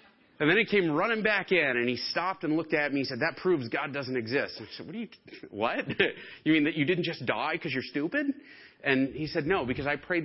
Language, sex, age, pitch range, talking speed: English, male, 40-59, 125-165 Hz, 260 wpm